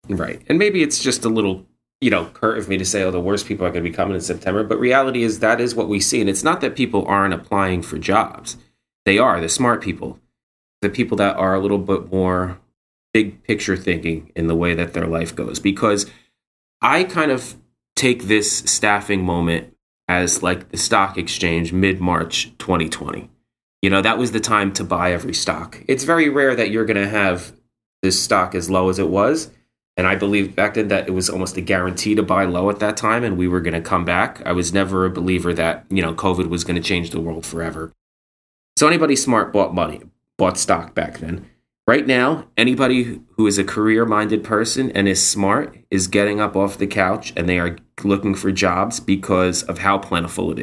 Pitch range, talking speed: 90-110 Hz, 215 wpm